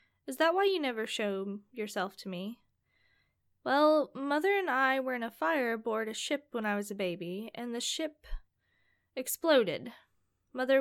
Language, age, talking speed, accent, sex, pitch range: English, 10-29, 165 wpm, American, female, 210-290 Hz